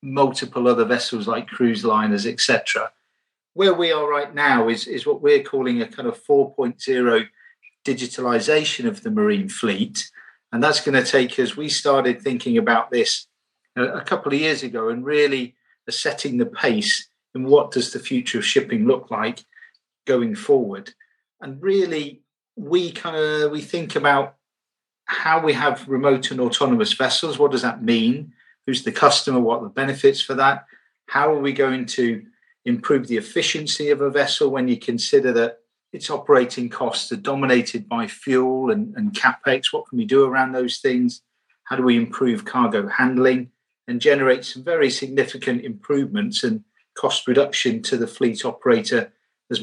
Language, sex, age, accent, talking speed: English, male, 50-69, British, 165 wpm